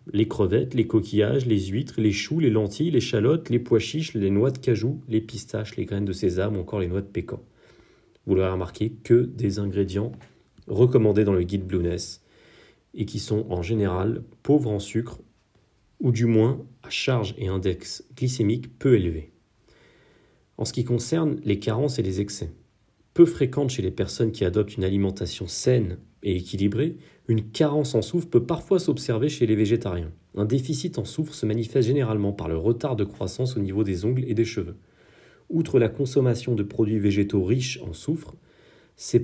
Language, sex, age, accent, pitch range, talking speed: French, male, 40-59, French, 100-130 Hz, 185 wpm